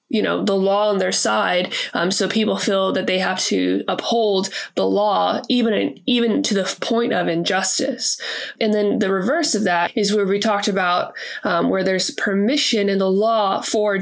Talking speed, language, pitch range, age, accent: 190 wpm, English, 195-230 Hz, 20-39, American